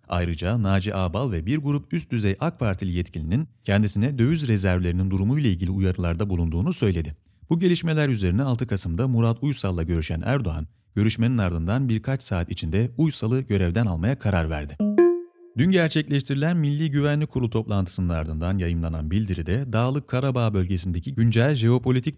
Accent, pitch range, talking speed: native, 90-140 Hz, 145 wpm